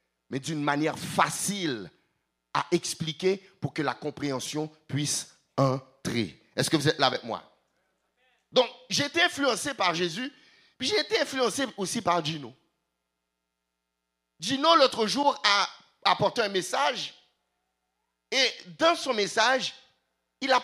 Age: 50-69